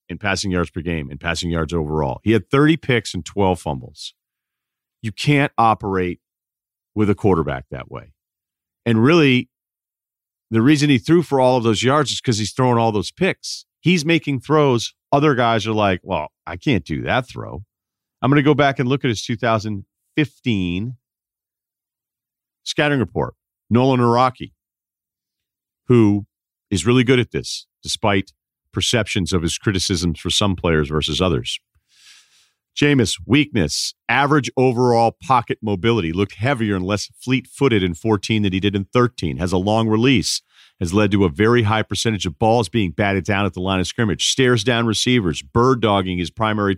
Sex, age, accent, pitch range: male, 40-59, American, 90-120 Hz